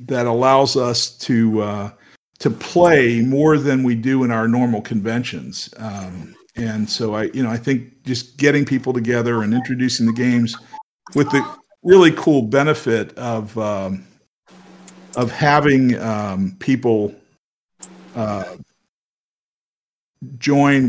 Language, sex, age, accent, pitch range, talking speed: English, male, 50-69, American, 115-145 Hz, 125 wpm